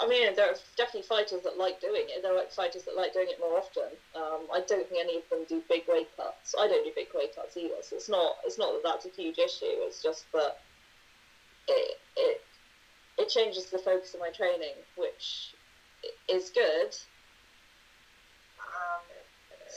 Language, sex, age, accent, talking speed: English, female, 30-49, British, 190 wpm